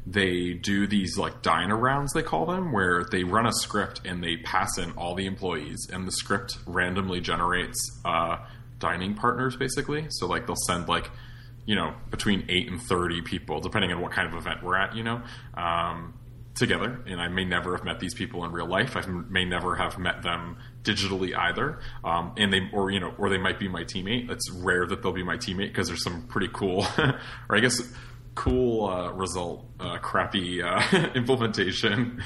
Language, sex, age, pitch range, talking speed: English, male, 20-39, 90-120 Hz, 200 wpm